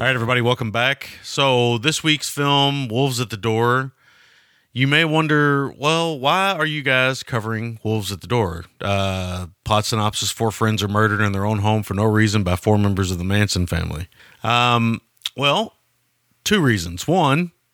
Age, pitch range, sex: 30-49, 105-130 Hz, male